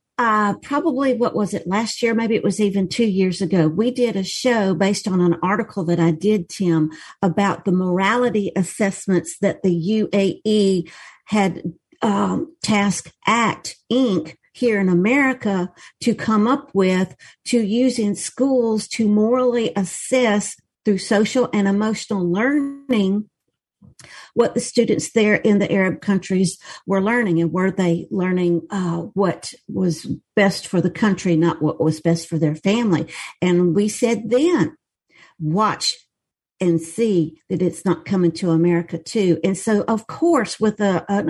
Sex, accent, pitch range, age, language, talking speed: female, American, 175-220 Hz, 50-69, English, 155 wpm